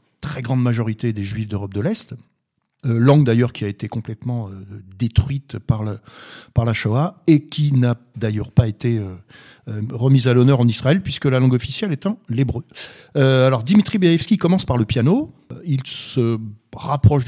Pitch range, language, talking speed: 115-155 Hz, French, 175 wpm